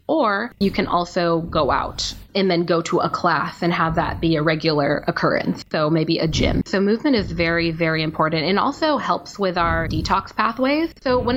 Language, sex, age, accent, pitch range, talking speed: English, female, 10-29, American, 175-225 Hz, 200 wpm